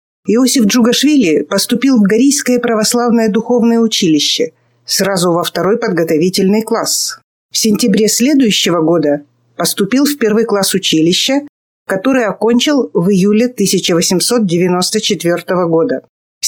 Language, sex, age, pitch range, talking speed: Russian, female, 50-69, 180-245 Hz, 105 wpm